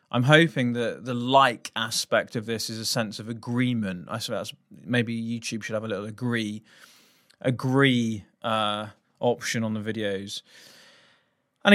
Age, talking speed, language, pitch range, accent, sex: 20-39, 150 wpm, English, 110-135 Hz, British, male